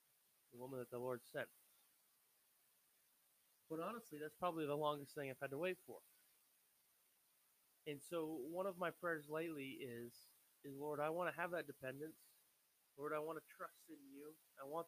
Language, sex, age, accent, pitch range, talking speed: English, male, 30-49, American, 135-165 Hz, 175 wpm